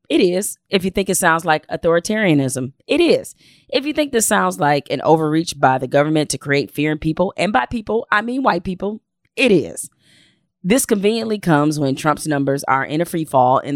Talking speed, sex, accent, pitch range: 210 wpm, female, American, 140-180 Hz